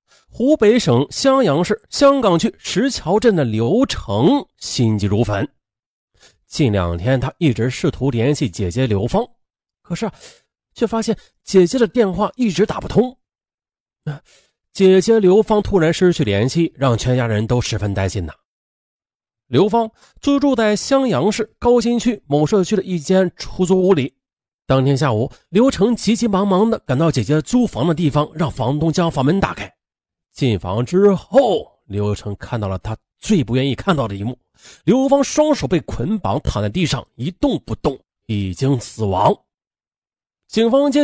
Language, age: Chinese, 30-49